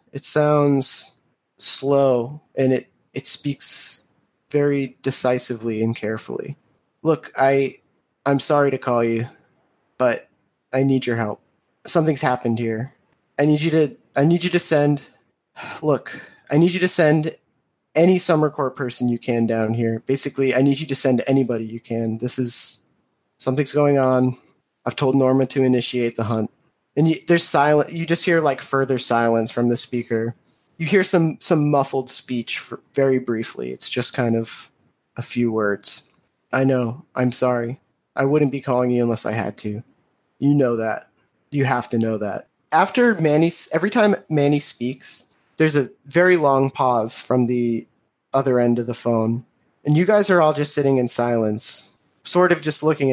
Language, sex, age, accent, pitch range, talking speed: English, male, 20-39, American, 120-150 Hz, 170 wpm